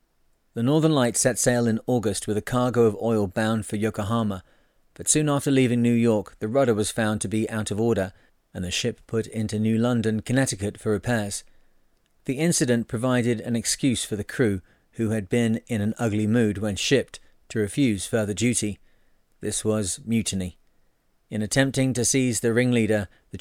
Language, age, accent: English, 30-49, British